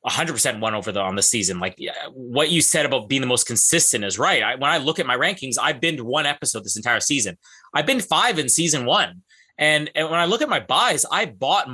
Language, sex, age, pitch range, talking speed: English, male, 30-49, 140-190 Hz, 250 wpm